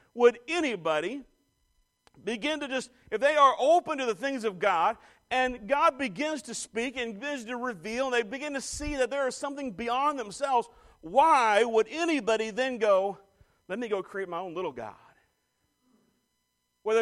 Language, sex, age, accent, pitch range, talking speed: English, male, 40-59, American, 160-255 Hz, 170 wpm